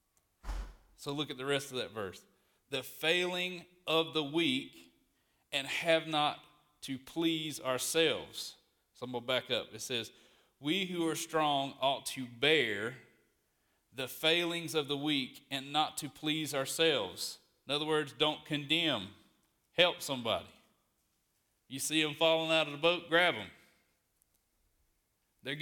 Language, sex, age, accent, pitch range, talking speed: English, male, 40-59, American, 125-160 Hz, 140 wpm